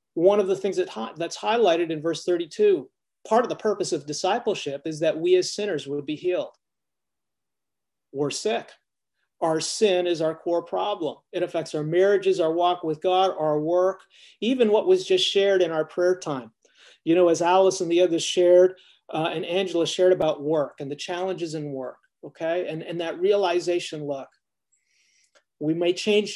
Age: 40-59